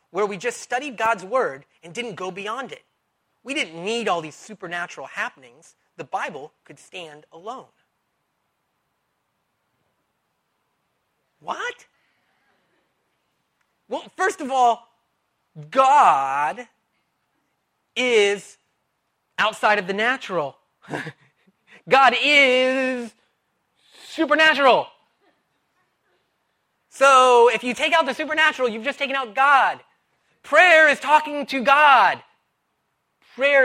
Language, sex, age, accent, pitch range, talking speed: English, male, 30-49, American, 215-295 Hz, 100 wpm